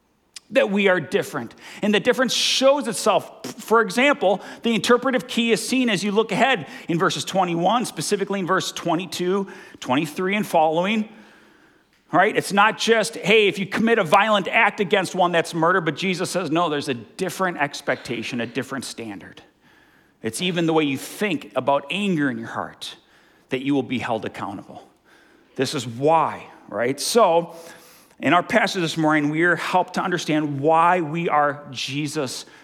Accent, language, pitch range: American, English, 160-215 Hz